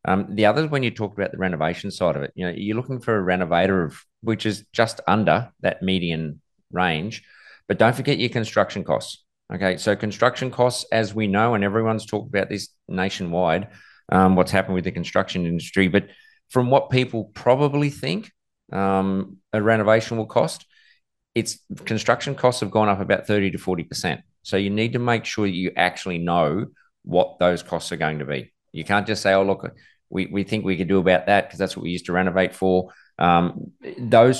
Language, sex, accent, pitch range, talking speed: English, male, Australian, 90-110 Hz, 200 wpm